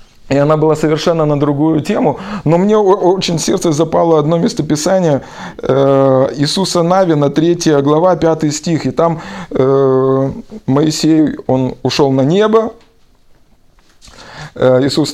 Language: Russian